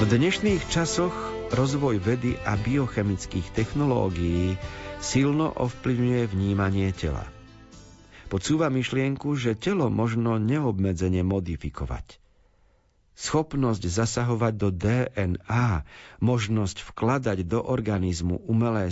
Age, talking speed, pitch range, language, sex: 50-69, 90 wpm, 100-130 Hz, Slovak, male